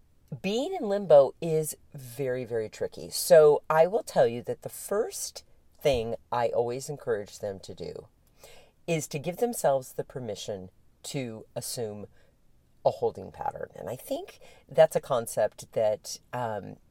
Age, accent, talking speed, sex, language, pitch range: 40-59, American, 145 wpm, female, English, 115-165 Hz